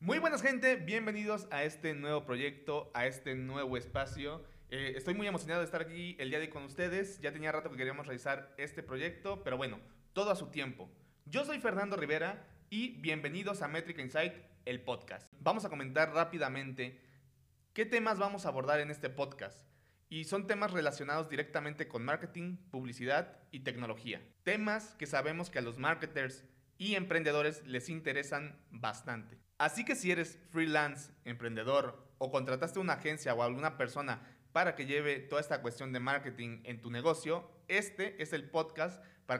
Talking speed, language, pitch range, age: 170 wpm, Spanish, 135-175 Hz, 30-49